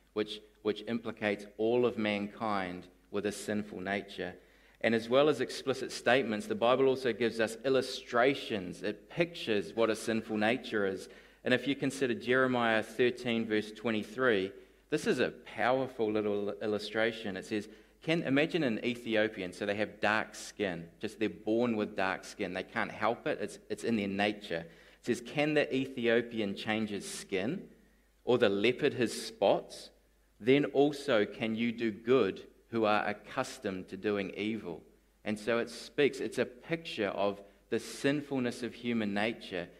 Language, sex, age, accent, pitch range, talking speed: English, male, 30-49, Australian, 105-120 Hz, 165 wpm